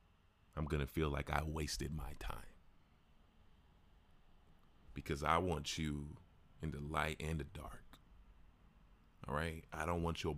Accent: American